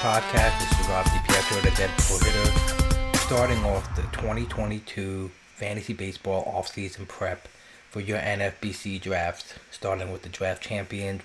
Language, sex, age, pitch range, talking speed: English, male, 30-49, 95-105 Hz, 140 wpm